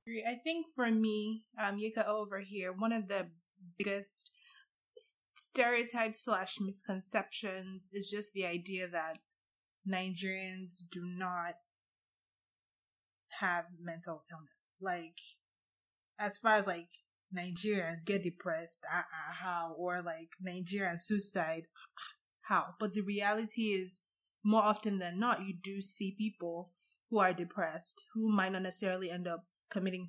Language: English